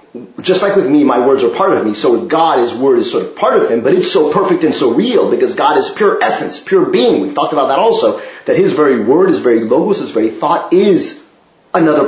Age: 40-59